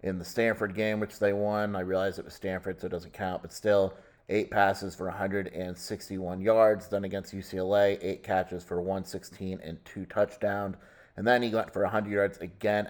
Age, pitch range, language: 30-49, 95-105 Hz, English